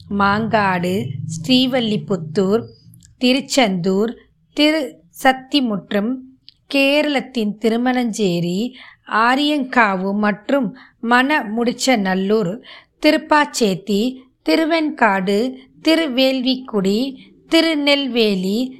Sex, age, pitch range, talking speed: female, 20-39, 210-280 Hz, 40 wpm